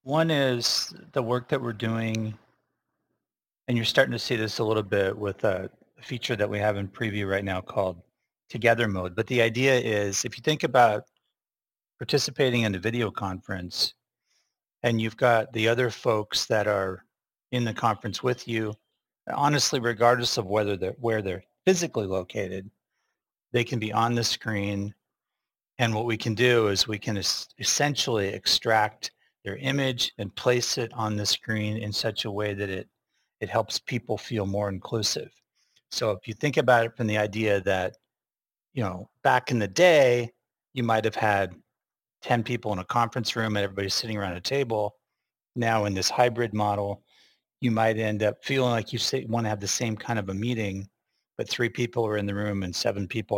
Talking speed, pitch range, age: 180 wpm, 100-120 Hz, 40-59